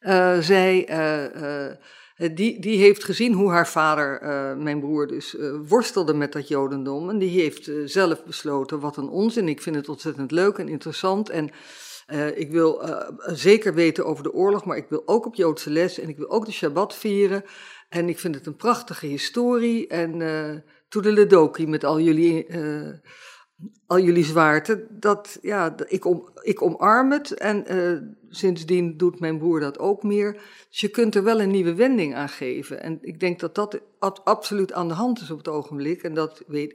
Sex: female